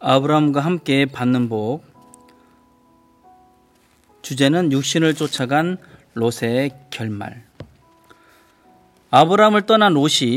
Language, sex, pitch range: Korean, male, 120-165 Hz